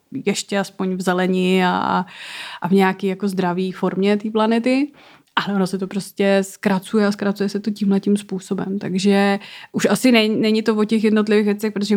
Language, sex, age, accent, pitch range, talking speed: Czech, female, 20-39, native, 190-210 Hz, 175 wpm